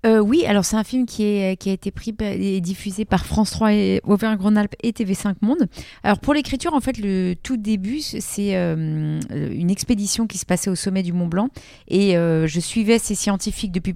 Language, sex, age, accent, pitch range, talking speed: French, female, 30-49, French, 175-215 Hz, 200 wpm